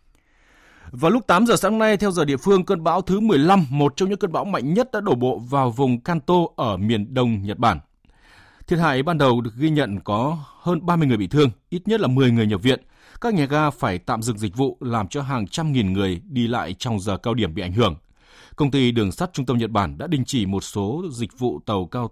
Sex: male